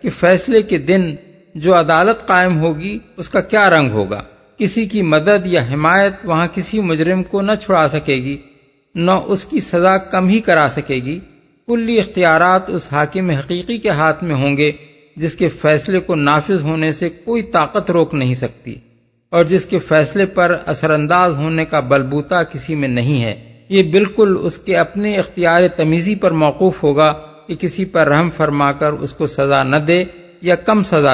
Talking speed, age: 165 wpm, 50-69